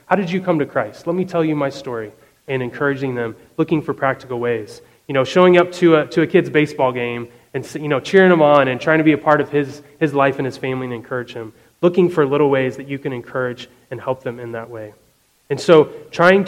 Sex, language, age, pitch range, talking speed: male, English, 30-49, 135-170 Hz, 250 wpm